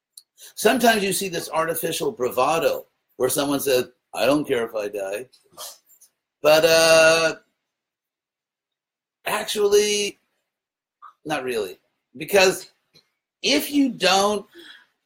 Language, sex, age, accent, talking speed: English, male, 50-69, American, 95 wpm